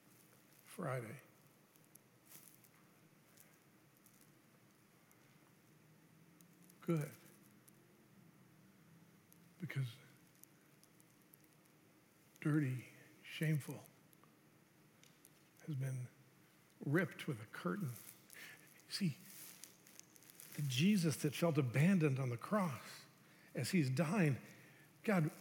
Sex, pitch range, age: male, 150-170 Hz, 60-79